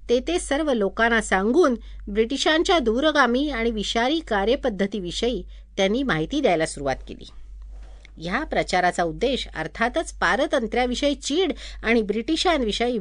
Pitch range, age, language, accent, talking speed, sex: 190-285 Hz, 50-69, Marathi, native, 100 wpm, female